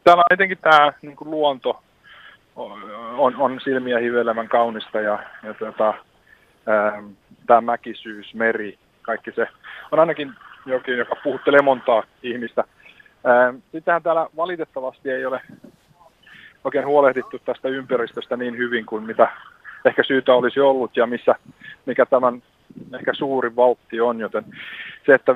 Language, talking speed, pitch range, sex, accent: Finnish, 130 wpm, 115-140 Hz, male, native